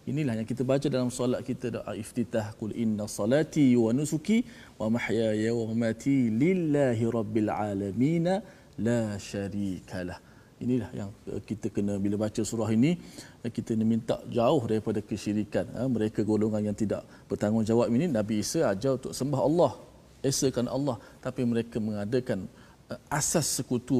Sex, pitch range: male, 100-120 Hz